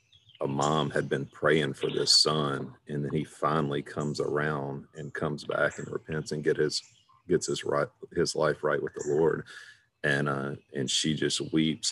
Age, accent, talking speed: 40-59, American, 185 wpm